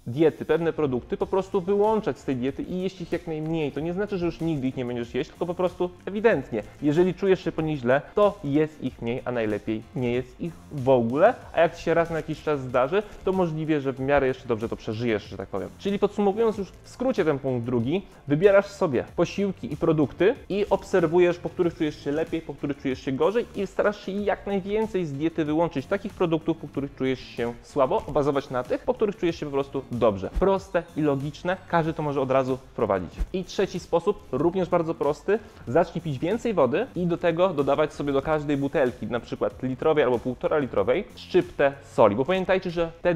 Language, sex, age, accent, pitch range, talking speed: Polish, male, 20-39, native, 140-180 Hz, 215 wpm